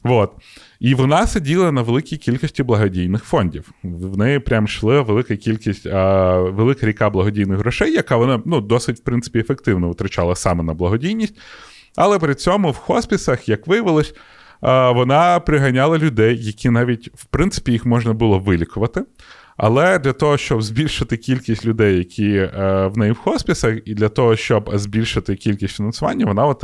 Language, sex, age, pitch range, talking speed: Ukrainian, male, 30-49, 105-135 Hz, 155 wpm